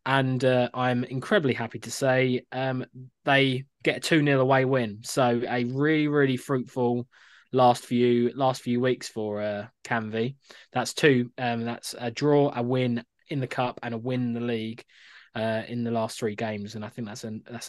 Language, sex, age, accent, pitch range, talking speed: English, male, 20-39, British, 120-135 Hz, 195 wpm